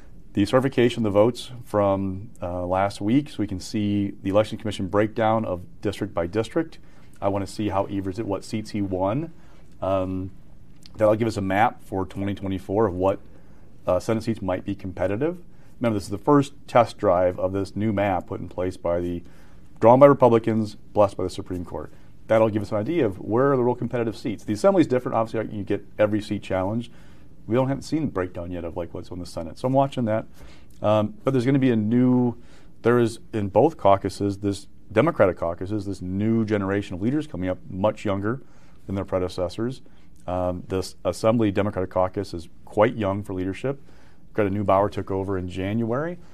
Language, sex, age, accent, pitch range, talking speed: English, male, 30-49, American, 95-115 Hz, 200 wpm